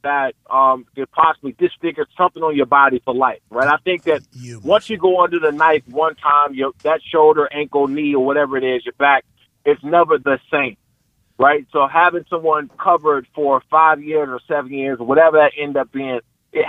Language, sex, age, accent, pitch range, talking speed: English, male, 30-49, American, 135-170 Hz, 205 wpm